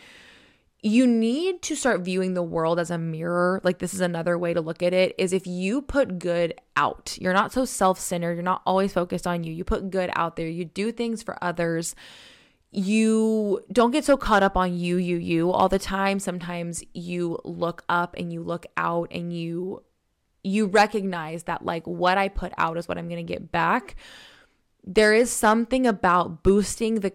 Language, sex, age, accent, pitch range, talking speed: English, female, 20-39, American, 170-210 Hz, 195 wpm